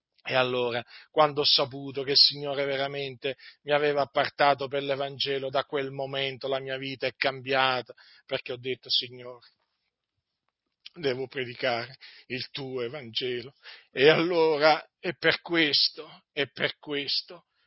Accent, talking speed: native, 135 wpm